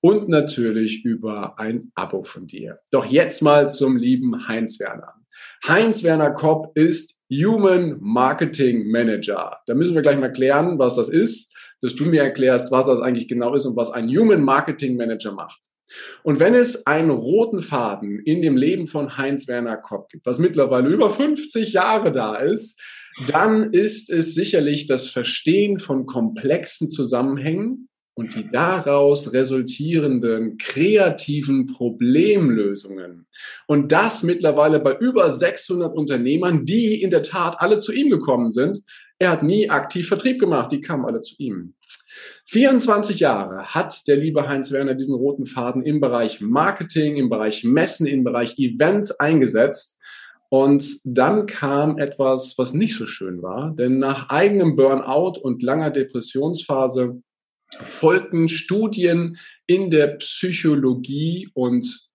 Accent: German